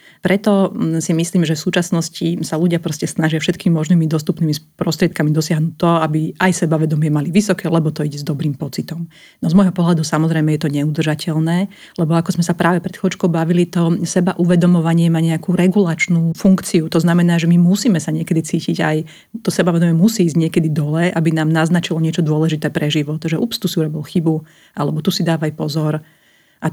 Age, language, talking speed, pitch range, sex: 40-59, Slovak, 190 wpm, 155-180 Hz, female